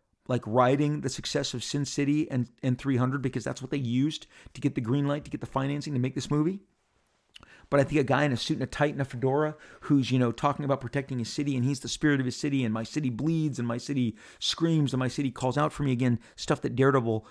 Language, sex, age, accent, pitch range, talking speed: English, male, 40-59, American, 120-145 Hz, 265 wpm